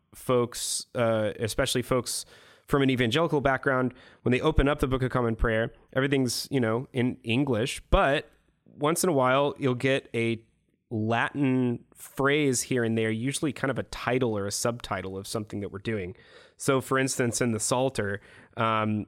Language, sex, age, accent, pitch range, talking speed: English, male, 20-39, American, 110-135 Hz, 175 wpm